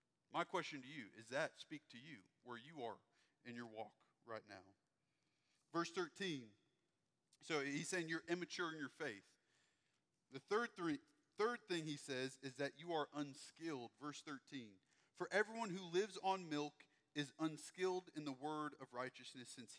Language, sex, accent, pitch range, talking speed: English, male, American, 135-175 Hz, 165 wpm